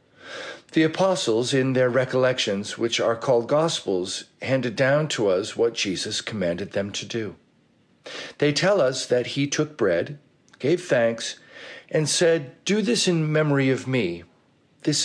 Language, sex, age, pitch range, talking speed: English, male, 50-69, 125-165 Hz, 150 wpm